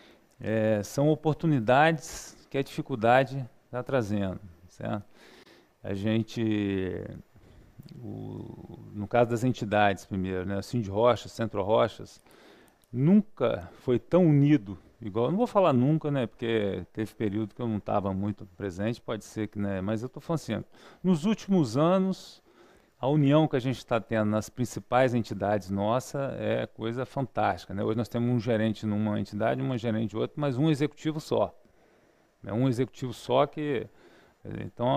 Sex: male